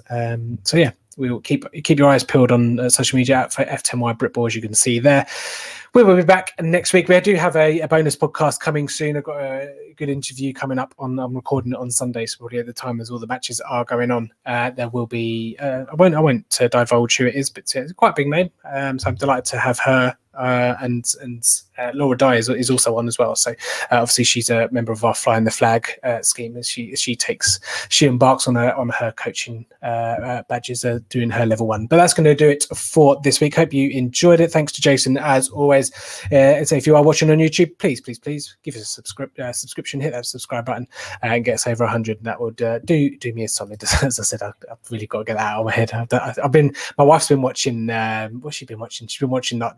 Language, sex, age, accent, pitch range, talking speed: English, male, 20-39, British, 120-145 Hz, 260 wpm